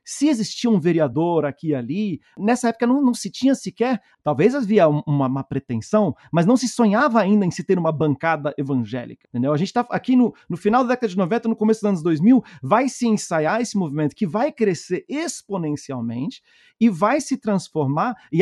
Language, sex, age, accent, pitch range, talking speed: Portuguese, male, 40-59, Brazilian, 150-230 Hz, 200 wpm